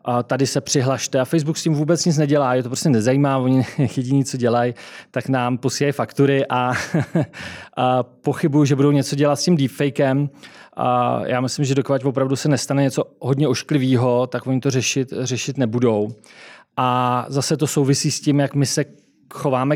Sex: male